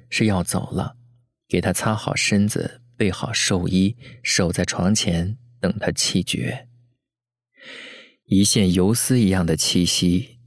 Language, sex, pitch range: Chinese, male, 100-120 Hz